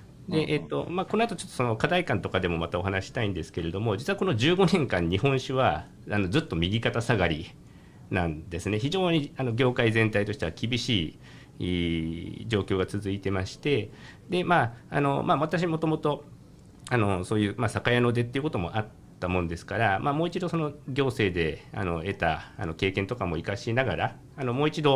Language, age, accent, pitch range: Japanese, 50-69, native, 95-130 Hz